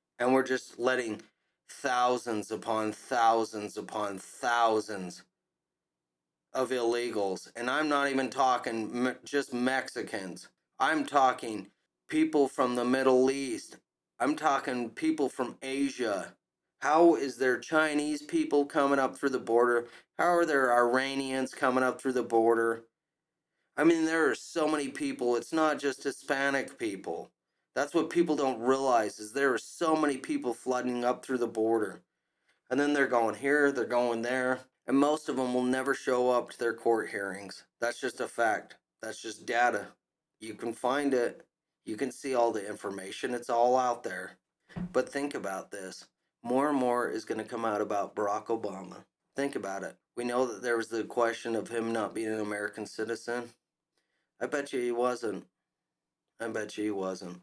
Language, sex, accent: English, male, American